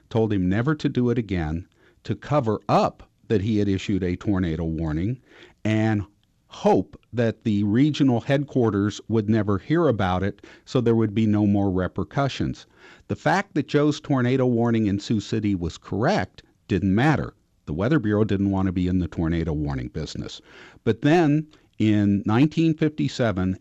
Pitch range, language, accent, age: 95-130 Hz, English, American, 50-69